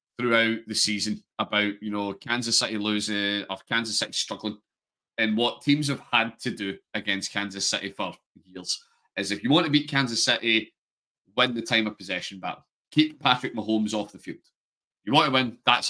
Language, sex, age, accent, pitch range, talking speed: English, male, 30-49, British, 100-125 Hz, 190 wpm